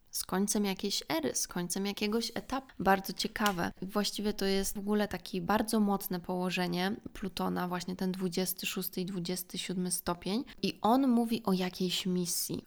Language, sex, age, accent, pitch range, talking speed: Polish, female, 20-39, native, 185-210 Hz, 150 wpm